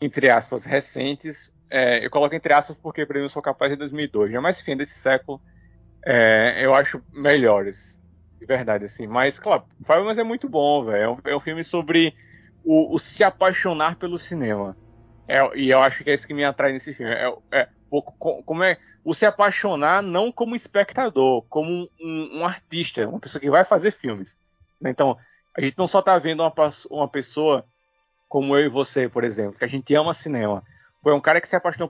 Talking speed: 205 wpm